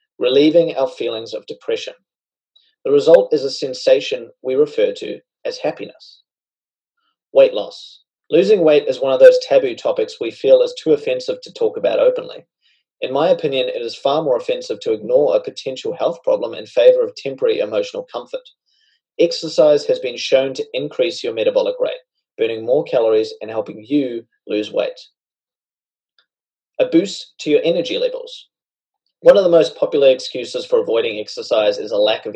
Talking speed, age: 165 wpm, 30-49